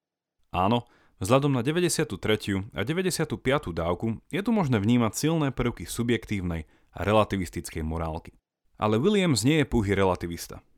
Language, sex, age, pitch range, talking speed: Slovak, male, 30-49, 90-130 Hz, 130 wpm